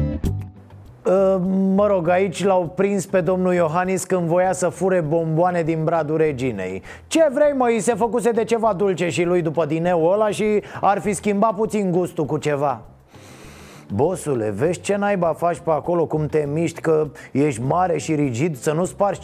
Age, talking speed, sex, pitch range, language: 30-49, 175 wpm, male, 170-210 Hz, Romanian